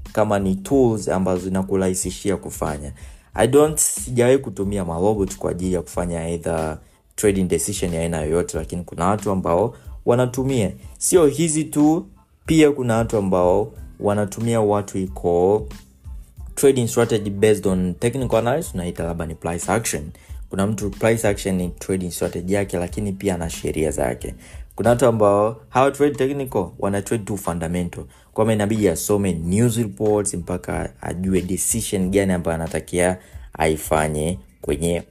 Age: 20-39